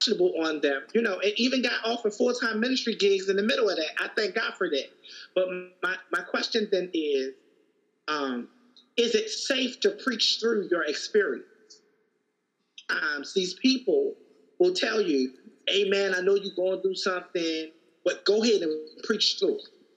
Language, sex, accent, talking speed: English, male, American, 165 wpm